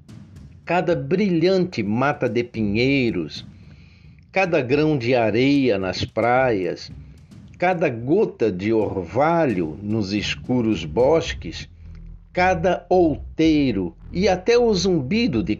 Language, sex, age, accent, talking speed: Portuguese, male, 60-79, Brazilian, 95 wpm